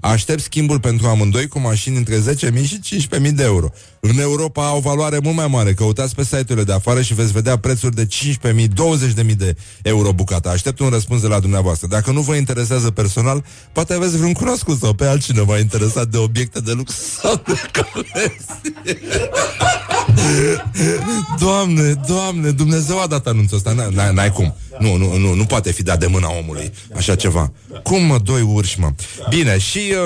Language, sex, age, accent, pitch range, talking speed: Romanian, male, 30-49, native, 105-135 Hz, 170 wpm